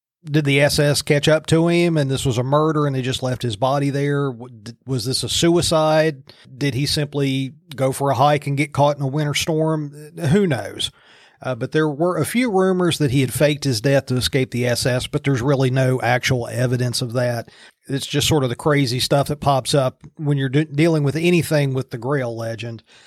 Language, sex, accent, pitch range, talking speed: English, male, American, 130-155 Hz, 215 wpm